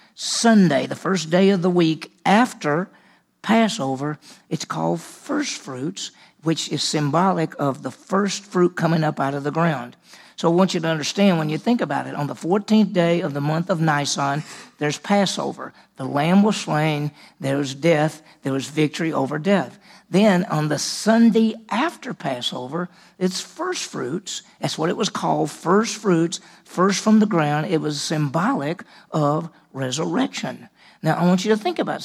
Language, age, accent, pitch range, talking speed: English, 50-69, American, 145-200 Hz, 170 wpm